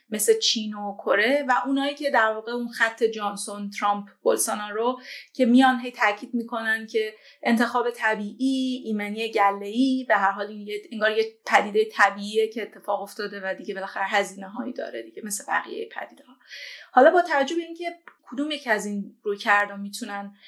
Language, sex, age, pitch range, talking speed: Persian, female, 30-49, 210-255 Hz, 170 wpm